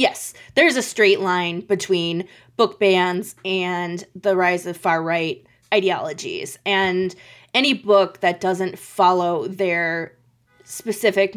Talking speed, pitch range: 115 wpm, 170-205 Hz